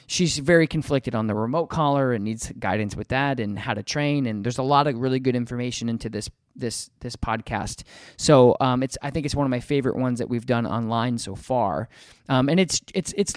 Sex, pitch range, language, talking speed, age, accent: male, 120-145 Hz, English, 230 wpm, 20-39, American